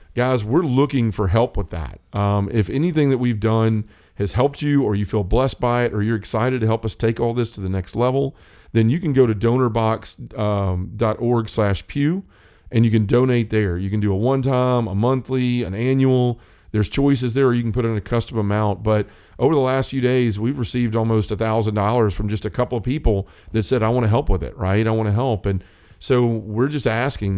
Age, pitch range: 40-59, 100-125 Hz